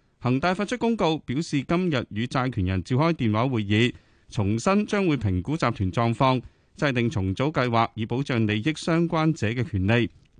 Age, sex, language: 30-49, male, Chinese